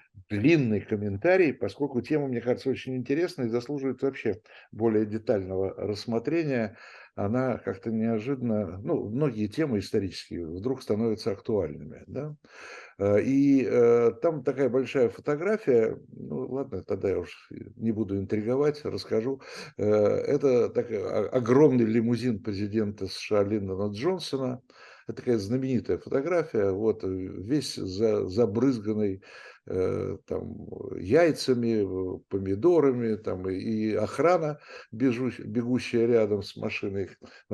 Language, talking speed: Russian, 110 wpm